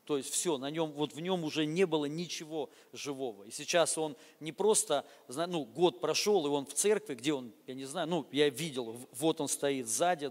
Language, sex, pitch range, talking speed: Russian, male, 145-180 Hz, 215 wpm